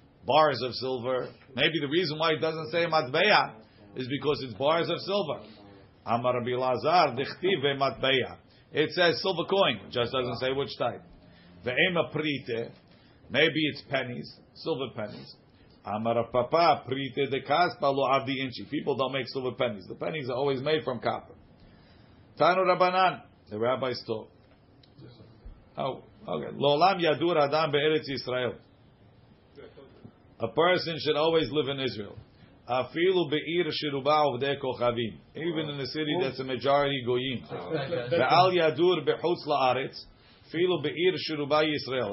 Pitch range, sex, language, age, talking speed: 120-155 Hz, male, English, 50-69, 115 wpm